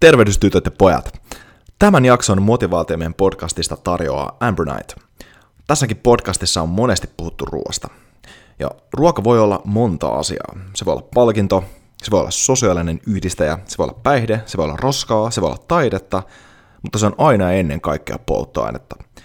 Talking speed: 155 wpm